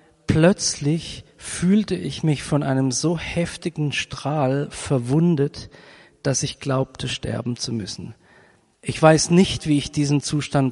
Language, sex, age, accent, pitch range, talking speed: German, male, 40-59, German, 130-155 Hz, 130 wpm